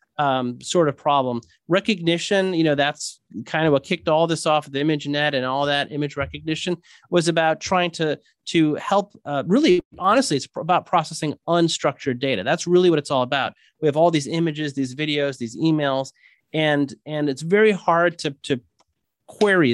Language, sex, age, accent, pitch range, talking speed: English, male, 30-49, American, 140-175 Hz, 180 wpm